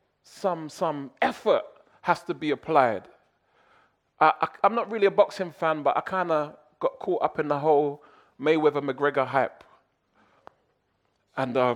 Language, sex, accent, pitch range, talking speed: English, male, British, 125-160 Hz, 145 wpm